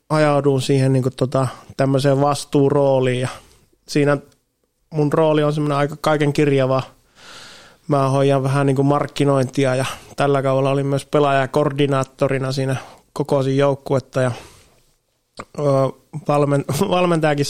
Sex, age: male, 20-39